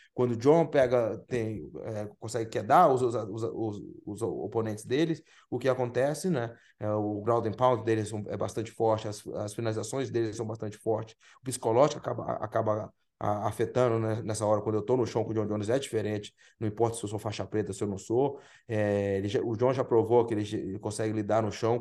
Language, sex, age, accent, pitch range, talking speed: English, male, 20-39, Brazilian, 105-120 Hz, 210 wpm